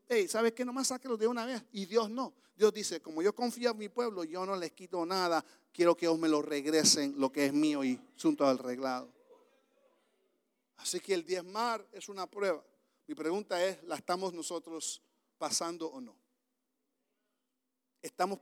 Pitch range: 195-255 Hz